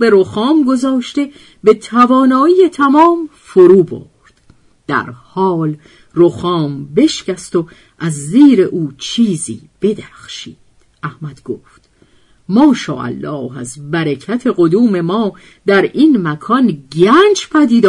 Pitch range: 155-240 Hz